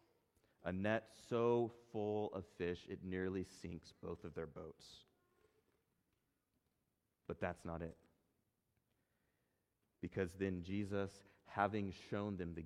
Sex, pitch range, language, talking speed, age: male, 85-105 Hz, English, 115 wpm, 30-49